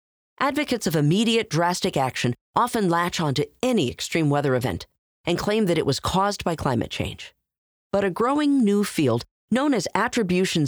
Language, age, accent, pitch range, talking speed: English, 40-59, American, 140-215 Hz, 165 wpm